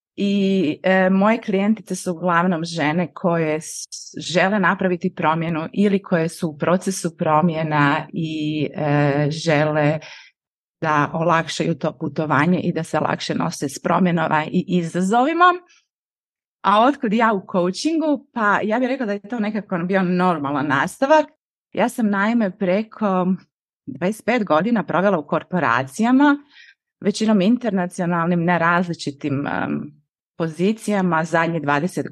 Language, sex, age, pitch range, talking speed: Croatian, female, 30-49, 160-210 Hz, 120 wpm